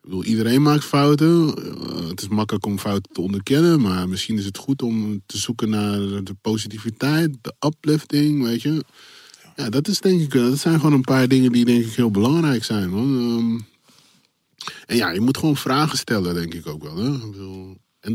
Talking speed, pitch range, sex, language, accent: 200 wpm, 95-130 Hz, male, Dutch, Dutch